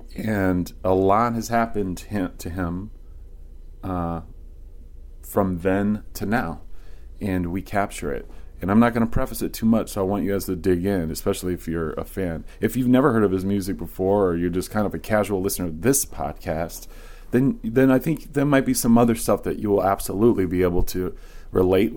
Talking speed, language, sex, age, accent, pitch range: 205 wpm, English, male, 30-49, American, 85-110 Hz